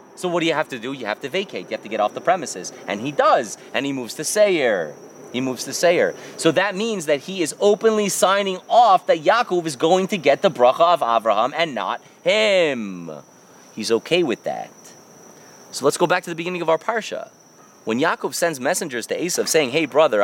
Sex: male